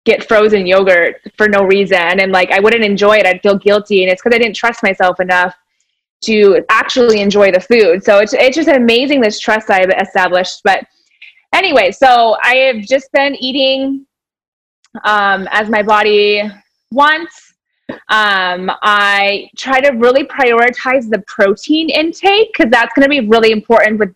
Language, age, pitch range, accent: English, 20-39, 195-250 Hz, American